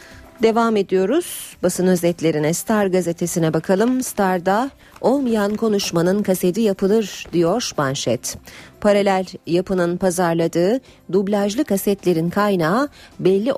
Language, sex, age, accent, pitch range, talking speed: Turkish, female, 40-59, native, 155-210 Hz, 95 wpm